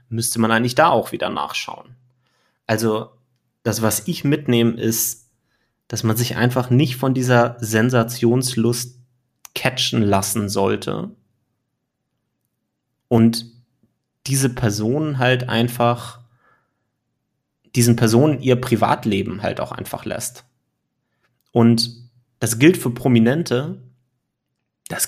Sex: male